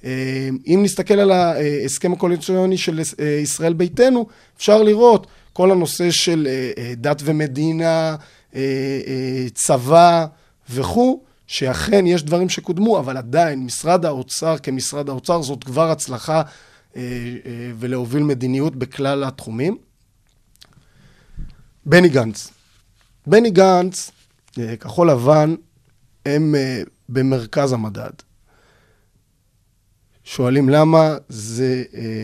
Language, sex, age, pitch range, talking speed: Hebrew, male, 30-49, 125-165 Hz, 85 wpm